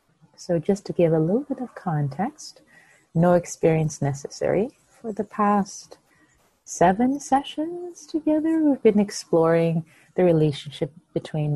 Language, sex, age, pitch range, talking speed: English, female, 40-59, 145-195 Hz, 125 wpm